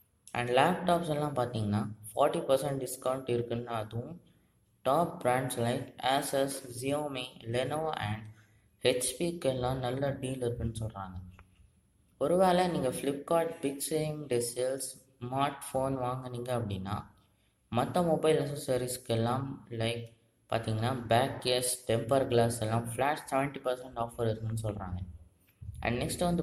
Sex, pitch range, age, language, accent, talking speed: female, 110-140 Hz, 20-39, Tamil, native, 100 wpm